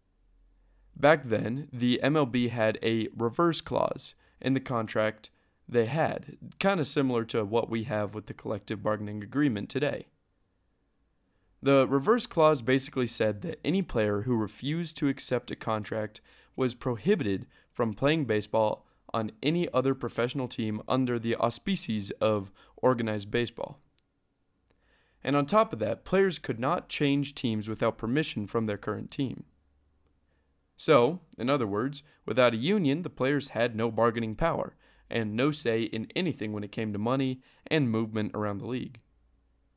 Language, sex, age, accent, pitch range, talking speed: English, male, 20-39, American, 105-135 Hz, 150 wpm